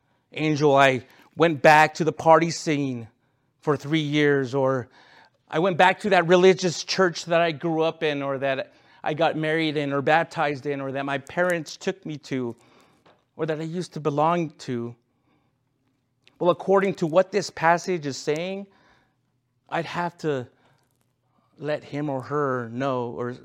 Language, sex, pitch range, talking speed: English, male, 130-170 Hz, 165 wpm